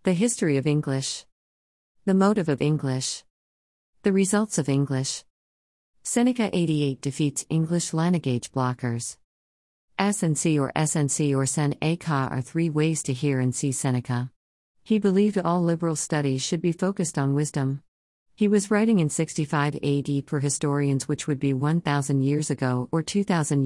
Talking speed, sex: 145 wpm, female